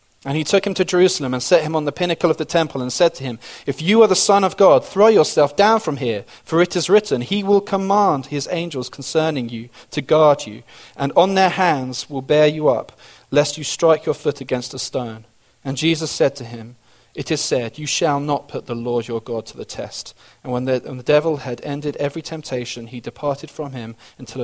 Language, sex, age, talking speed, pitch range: English, male, 40-59, 230 wpm, 120-155 Hz